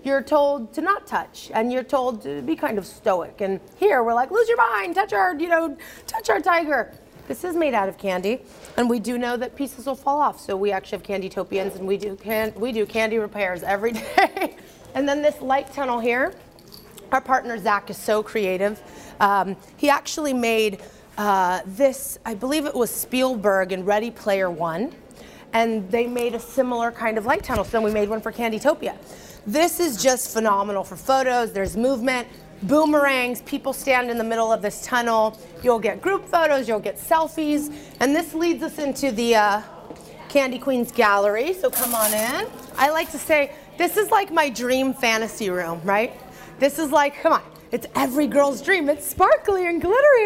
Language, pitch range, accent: English, 210-300 Hz, American